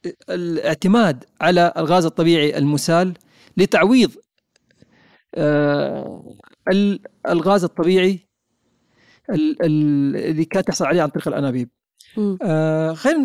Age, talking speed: 40-59, 75 wpm